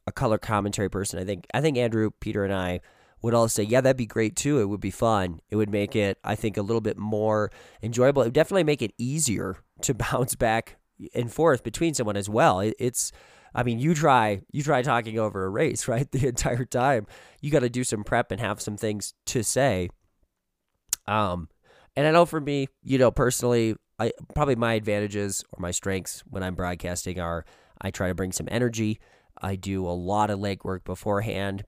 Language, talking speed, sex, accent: English, 210 wpm, male, American